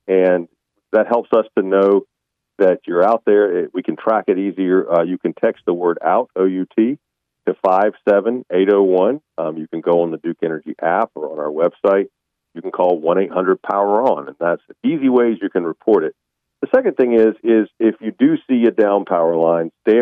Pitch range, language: 85-125 Hz, English